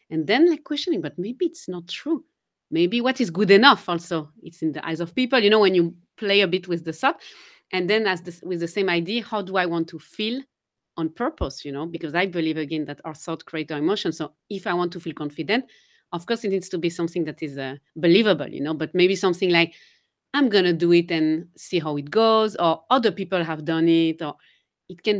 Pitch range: 160-205 Hz